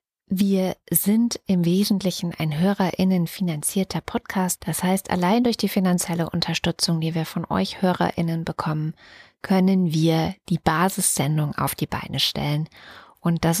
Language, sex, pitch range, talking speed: German, female, 160-200 Hz, 135 wpm